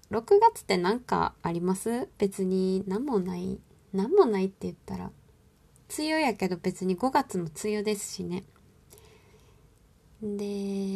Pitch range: 180-215 Hz